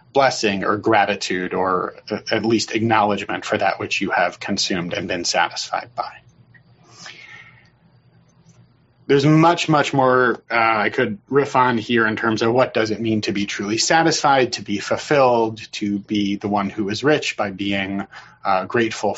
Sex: male